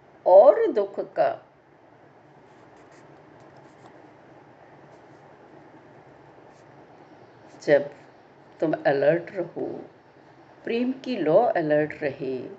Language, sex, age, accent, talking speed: Hindi, female, 50-69, native, 55 wpm